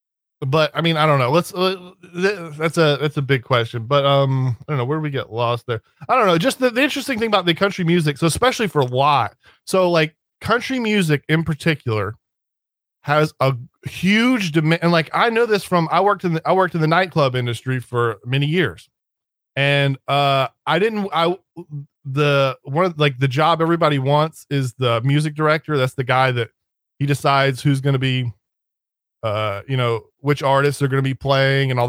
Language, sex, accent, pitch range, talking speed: English, male, American, 130-170 Hz, 200 wpm